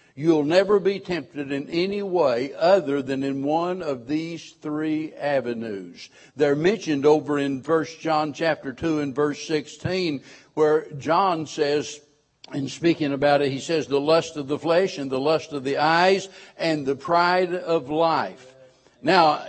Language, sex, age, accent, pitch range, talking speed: English, male, 60-79, American, 145-180 Hz, 160 wpm